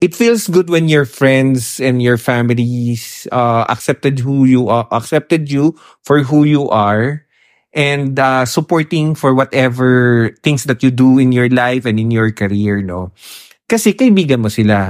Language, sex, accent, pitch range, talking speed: English, male, Filipino, 115-150 Hz, 165 wpm